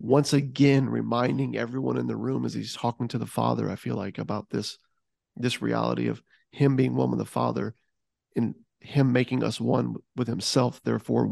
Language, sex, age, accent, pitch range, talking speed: English, male, 40-59, American, 120-140 Hz, 185 wpm